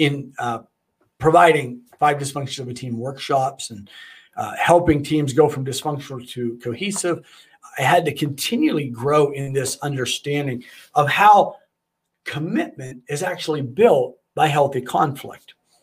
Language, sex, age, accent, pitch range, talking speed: English, male, 50-69, American, 135-175 Hz, 125 wpm